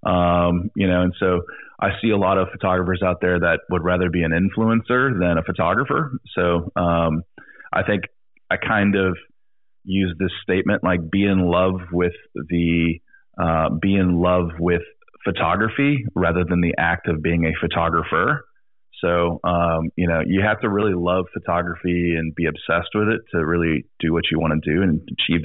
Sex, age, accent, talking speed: male, 30-49, American, 180 wpm